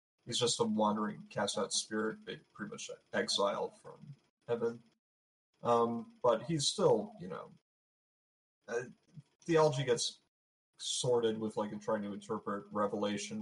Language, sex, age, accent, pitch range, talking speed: English, male, 30-49, American, 110-160 Hz, 125 wpm